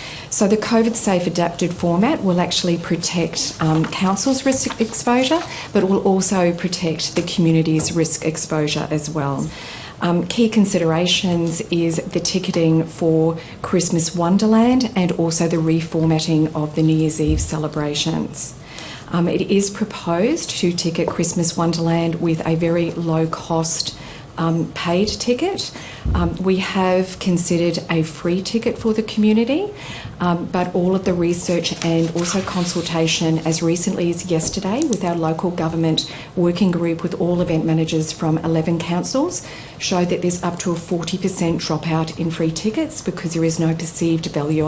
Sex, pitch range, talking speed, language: female, 160-185 Hz, 150 wpm, English